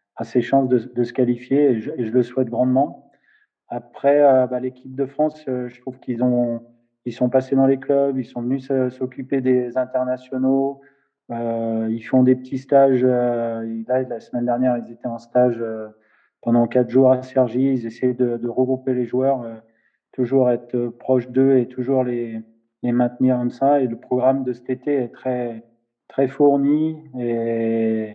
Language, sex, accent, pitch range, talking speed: French, male, French, 115-130 Hz, 190 wpm